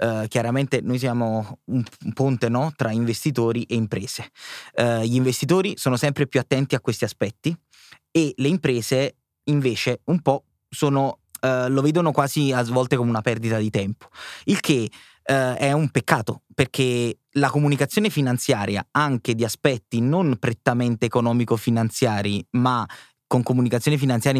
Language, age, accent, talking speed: Italian, 20-39, native, 145 wpm